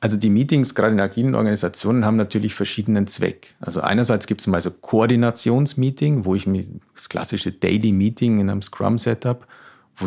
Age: 40-59